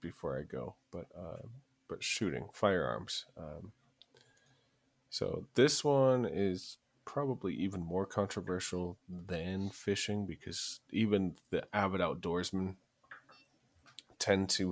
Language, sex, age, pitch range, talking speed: English, male, 30-49, 85-105 Hz, 105 wpm